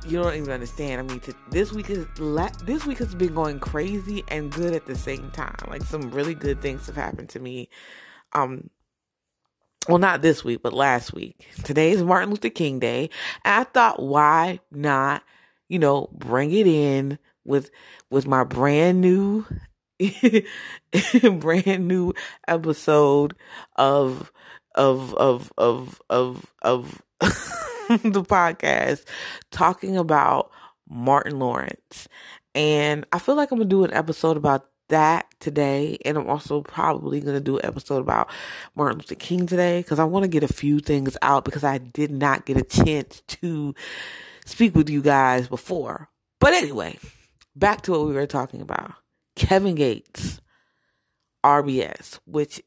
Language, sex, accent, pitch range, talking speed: English, female, American, 135-175 Hz, 155 wpm